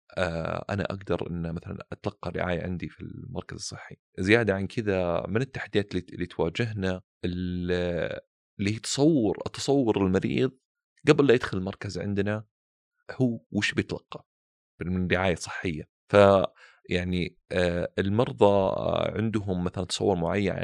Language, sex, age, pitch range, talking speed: Arabic, male, 30-49, 90-110 Hz, 110 wpm